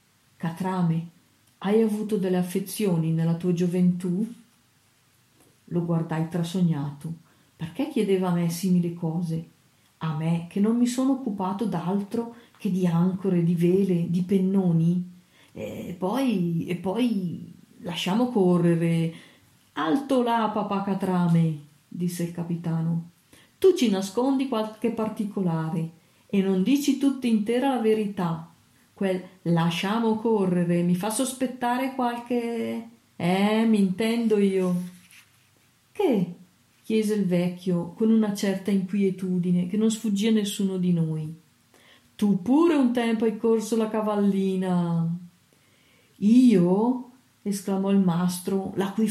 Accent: native